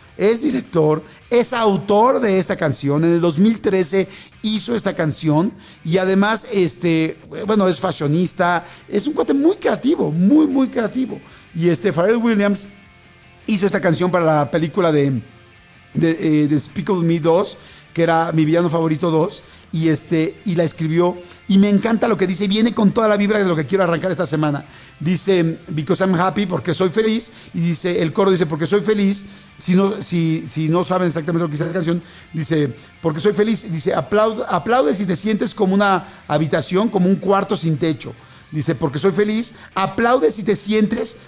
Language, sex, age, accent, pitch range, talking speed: English, male, 50-69, Mexican, 165-210 Hz, 185 wpm